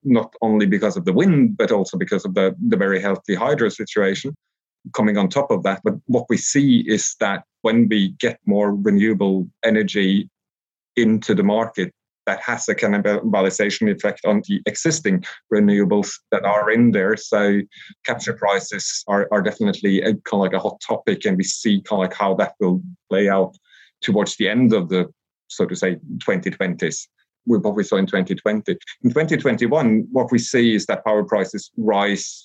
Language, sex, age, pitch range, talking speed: English, male, 30-49, 95-120 Hz, 180 wpm